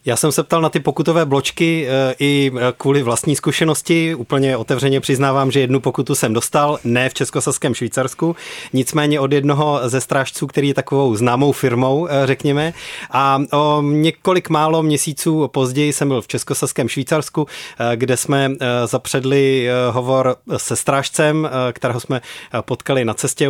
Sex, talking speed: male, 145 wpm